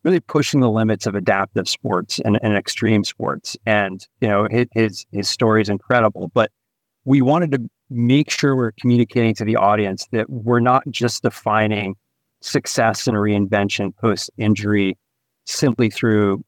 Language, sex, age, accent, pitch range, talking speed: English, male, 40-59, American, 100-120 Hz, 150 wpm